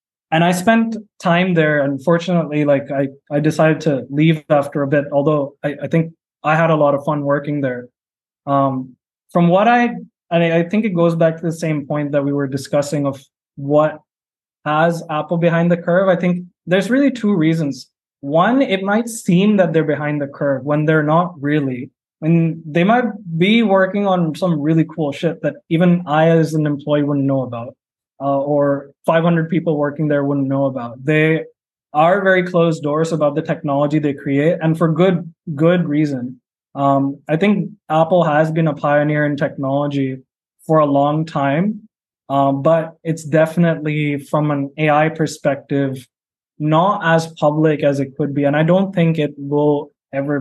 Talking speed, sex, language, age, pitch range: 180 wpm, male, English, 20-39, 145-170 Hz